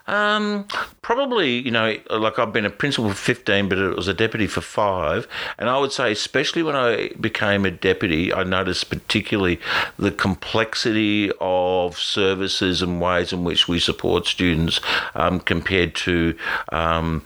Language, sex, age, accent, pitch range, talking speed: English, male, 50-69, Australian, 85-105 Hz, 160 wpm